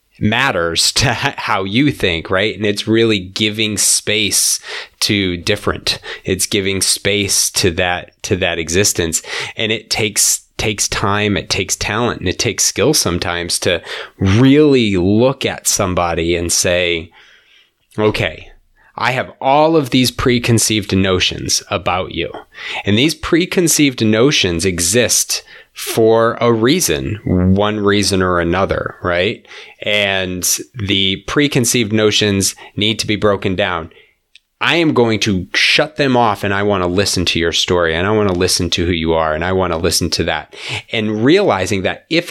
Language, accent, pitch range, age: English, American, 95-120 Hz, 30-49